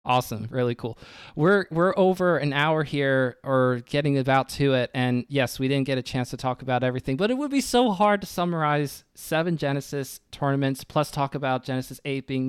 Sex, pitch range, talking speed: male, 125-145 Hz, 200 wpm